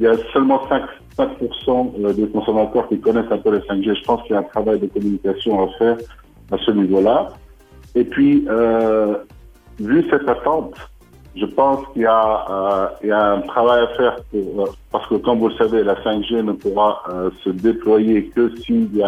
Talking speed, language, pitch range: 210 wpm, Arabic, 95-115 Hz